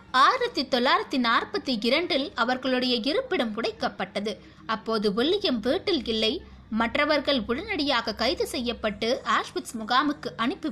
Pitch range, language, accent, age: 230-310 Hz, Tamil, native, 20-39